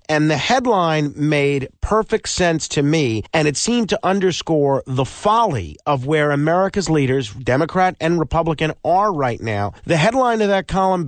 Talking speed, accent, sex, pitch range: 160 wpm, American, male, 140-195 Hz